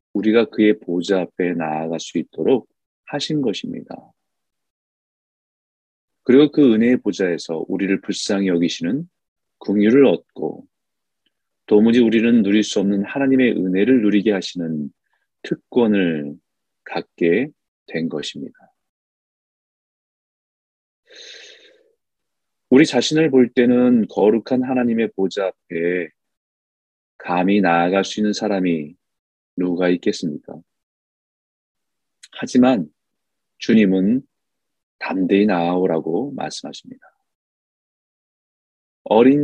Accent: native